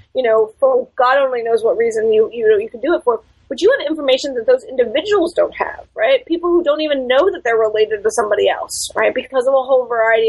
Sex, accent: female, American